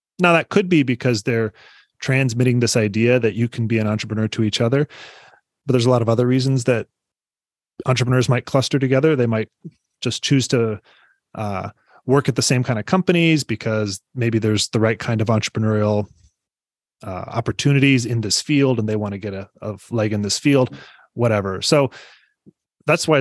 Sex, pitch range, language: male, 110-135 Hz, English